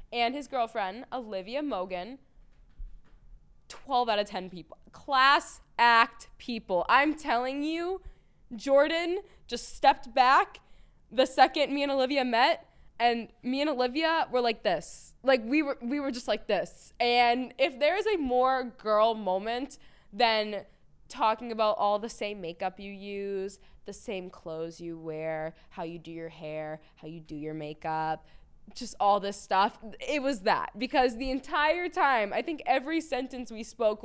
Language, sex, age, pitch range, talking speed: English, female, 10-29, 195-265 Hz, 155 wpm